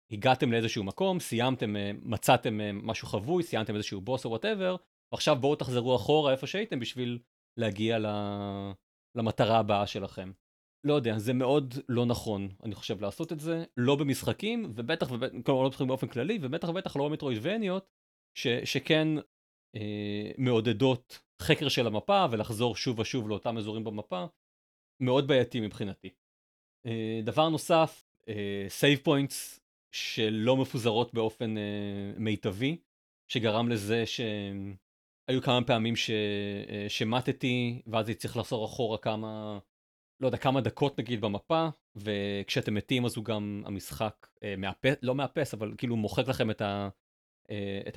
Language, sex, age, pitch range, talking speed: Hebrew, male, 40-59, 105-130 Hz, 140 wpm